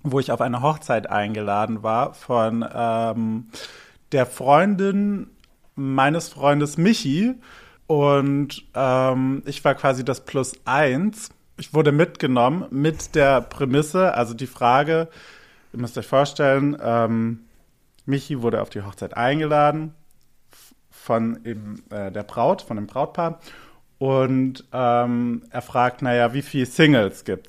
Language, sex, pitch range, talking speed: German, male, 120-150 Hz, 130 wpm